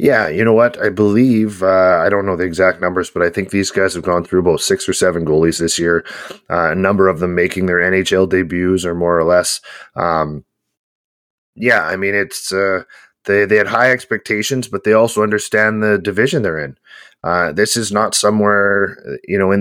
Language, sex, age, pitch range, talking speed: English, male, 30-49, 90-105 Hz, 210 wpm